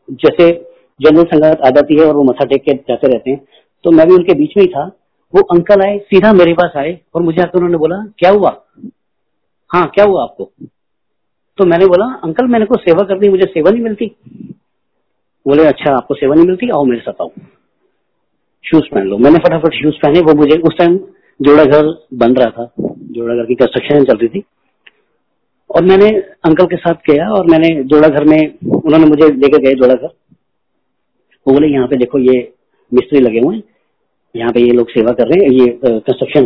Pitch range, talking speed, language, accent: 130-190 Hz, 180 wpm, Hindi, native